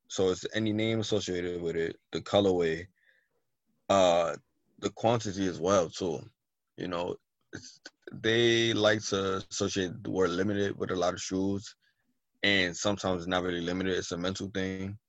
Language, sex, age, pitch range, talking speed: English, male, 20-39, 90-100 Hz, 160 wpm